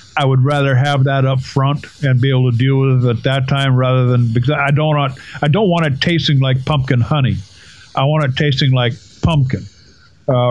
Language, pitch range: English, 125-150 Hz